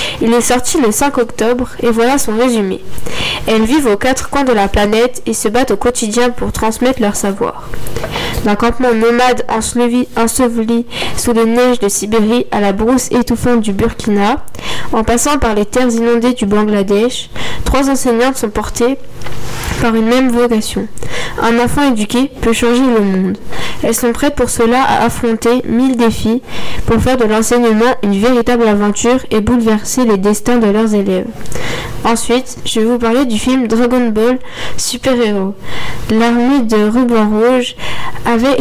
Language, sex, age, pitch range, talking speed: French, female, 10-29, 215-245 Hz, 160 wpm